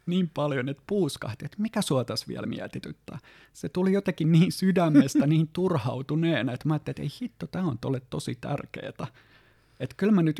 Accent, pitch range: native, 120-150 Hz